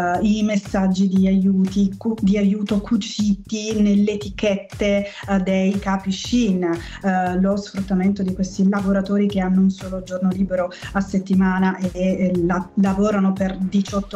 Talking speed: 120 wpm